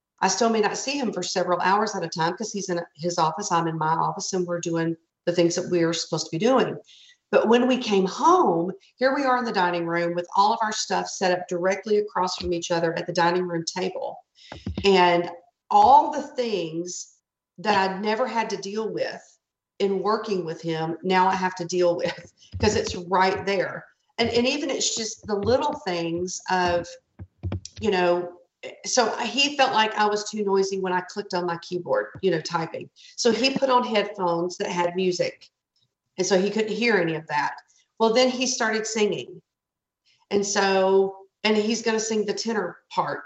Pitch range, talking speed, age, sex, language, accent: 175-220 Hz, 200 wpm, 40-59, female, English, American